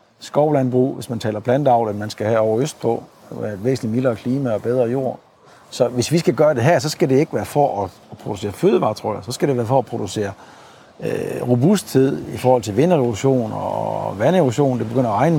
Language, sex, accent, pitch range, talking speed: Danish, male, native, 115-145 Hz, 210 wpm